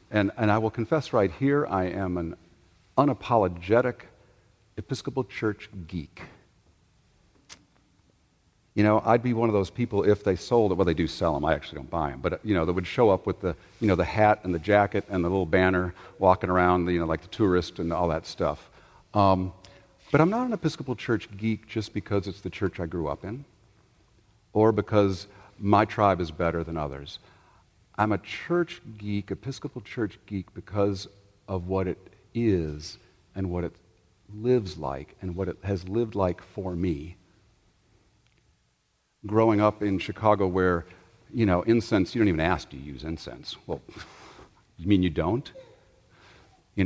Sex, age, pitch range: male, 50-69, 90-110 Hz